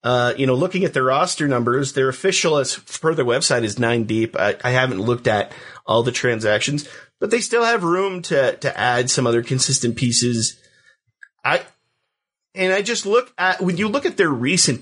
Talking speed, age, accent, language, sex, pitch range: 200 wpm, 30-49, American, English, male, 120-170 Hz